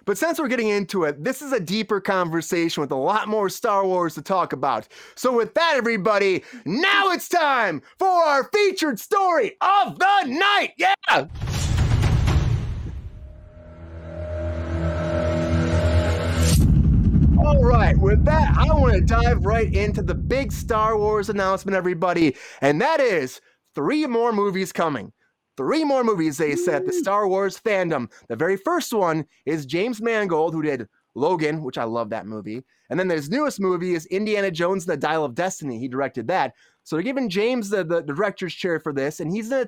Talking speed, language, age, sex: 170 wpm, English, 30-49, male